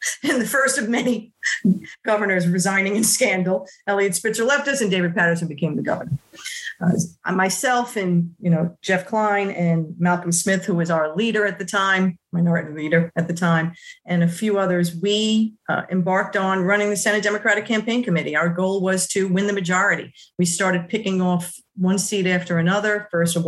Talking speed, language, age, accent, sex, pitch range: 185 wpm, English, 40-59, American, female, 175-210 Hz